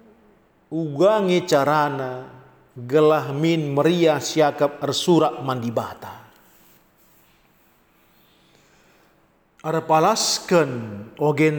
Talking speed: 50 wpm